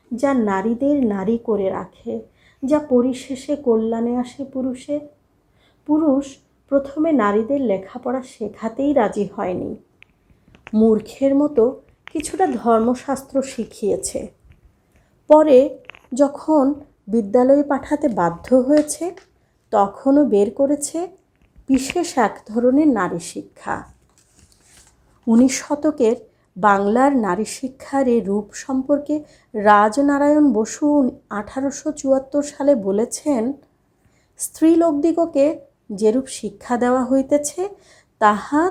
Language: Bengali